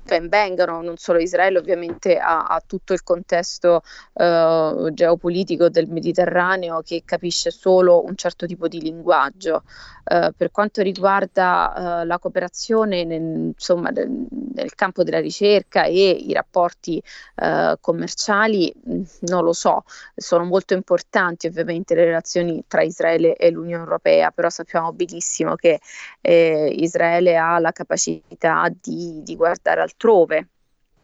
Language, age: Italian, 20-39